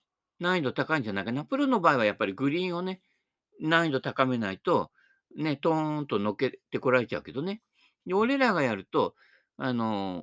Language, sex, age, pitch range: Japanese, male, 50-69, 130-190 Hz